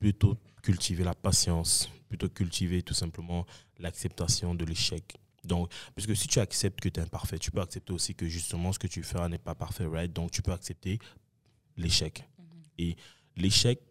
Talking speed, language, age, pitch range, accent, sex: 180 wpm, English, 20-39, 85-105 Hz, French, male